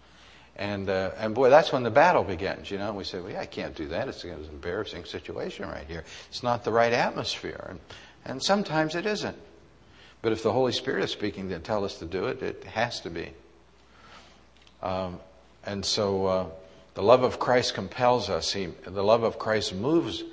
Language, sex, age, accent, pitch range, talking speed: English, male, 60-79, American, 85-115 Hz, 205 wpm